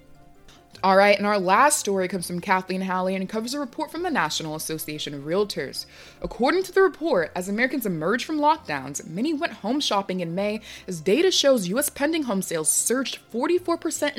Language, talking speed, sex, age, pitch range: English, 185 wpm, female, 20-39, 180-280 Hz